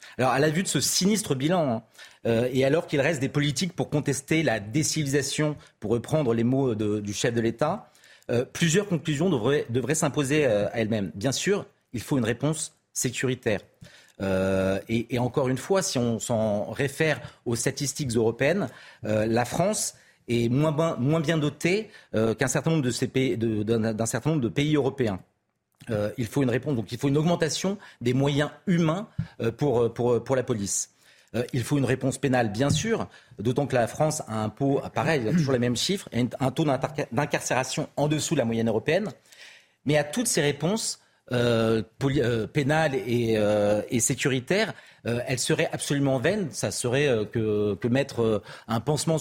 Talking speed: 180 wpm